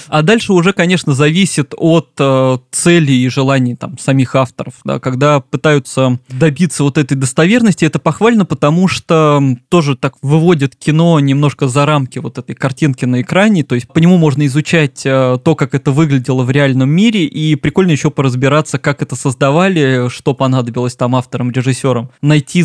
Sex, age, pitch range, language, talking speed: male, 20-39, 130-160 Hz, Russian, 160 wpm